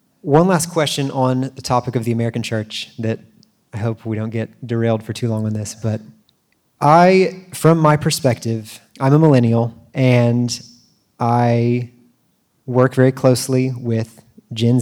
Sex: male